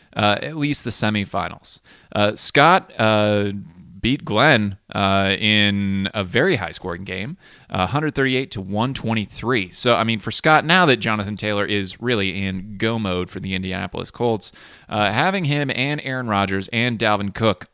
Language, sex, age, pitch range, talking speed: English, male, 30-49, 100-130 Hz, 160 wpm